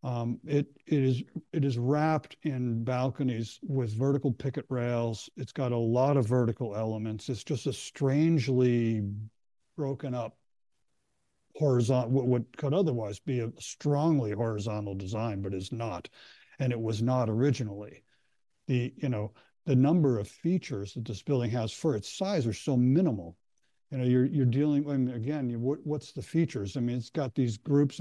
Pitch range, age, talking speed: 110-140 Hz, 60-79, 170 wpm